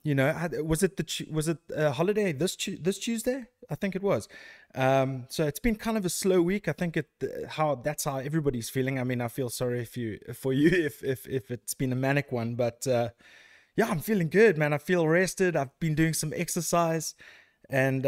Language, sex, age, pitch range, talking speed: English, male, 20-39, 125-165 Hz, 220 wpm